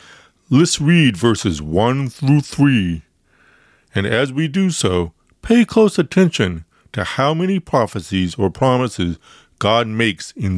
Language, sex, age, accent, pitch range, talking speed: English, male, 60-79, American, 90-125 Hz, 130 wpm